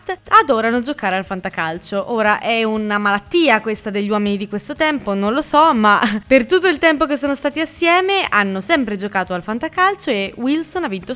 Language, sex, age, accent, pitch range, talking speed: Italian, female, 20-39, native, 200-295 Hz, 190 wpm